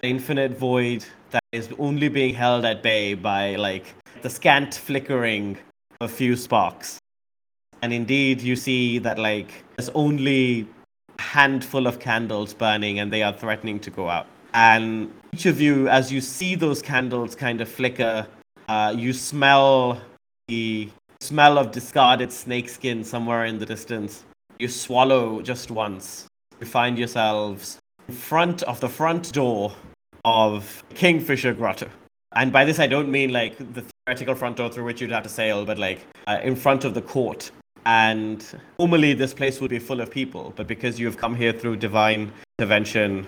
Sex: male